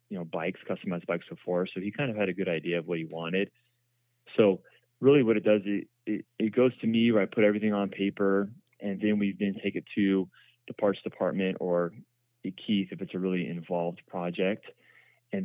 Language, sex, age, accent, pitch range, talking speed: English, male, 20-39, American, 90-110 Hz, 210 wpm